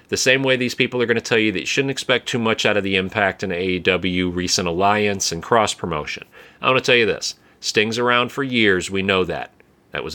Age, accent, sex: 40-59, American, male